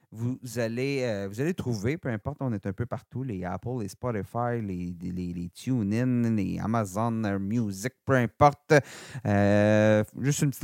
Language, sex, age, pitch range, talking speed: French, male, 40-59, 105-140 Hz, 170 wpm